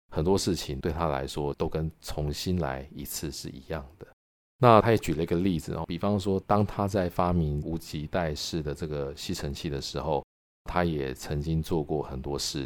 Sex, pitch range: male, 70-90 Hz